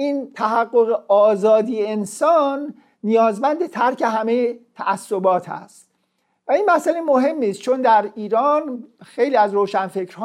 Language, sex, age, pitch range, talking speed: Persian, male, 50-69, 210-275 Hz, 115 wpm